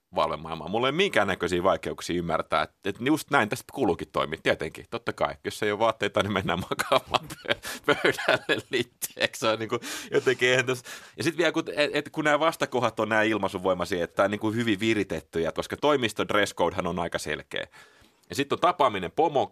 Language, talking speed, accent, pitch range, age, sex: Finnish, 170 wpm, native, 85-115 Hz, 30-49, male